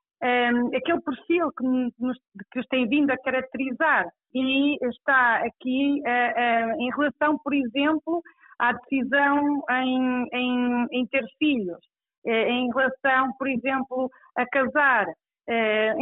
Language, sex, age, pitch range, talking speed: Portuguese, female, 40-59, 235-290 Hz, 130 wpm